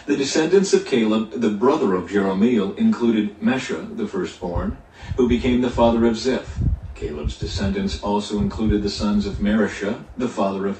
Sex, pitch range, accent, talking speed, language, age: male, 105-135 Hz, American, 160 wpm, English, 50-69